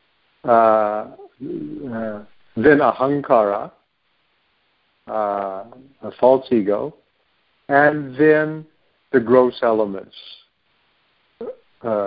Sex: male